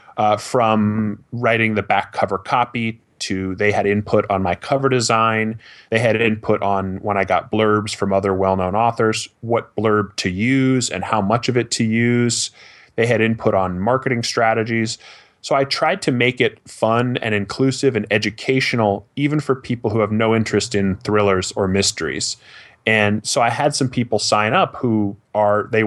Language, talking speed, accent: English, 180 wpm, American